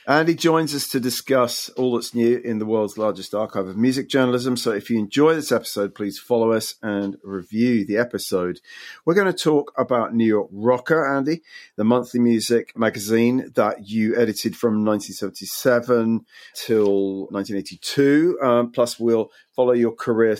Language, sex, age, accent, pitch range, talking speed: English, male, 40-59, British, 105-125 Hz, 160 wpm